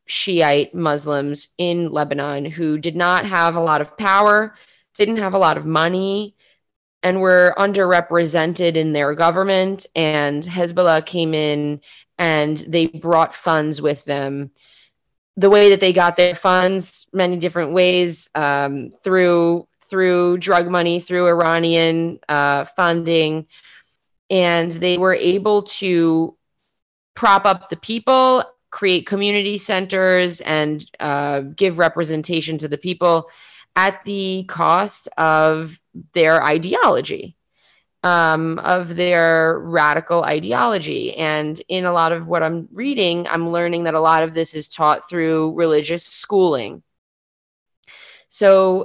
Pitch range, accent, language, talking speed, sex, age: 160-185 Hz, American, English, 130 wpm, female, 20-39